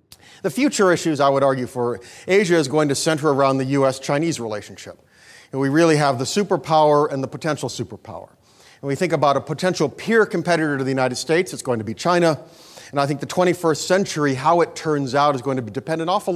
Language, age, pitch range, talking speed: English, 40-59, 130-160 Hz, 215 wpm